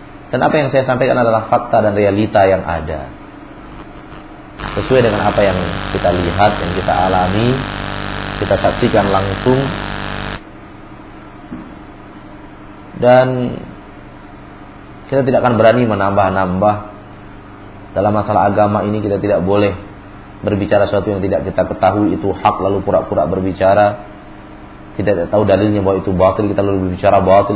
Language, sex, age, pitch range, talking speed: Malay, male, 40-59, 95-105 Hz, 125 wpm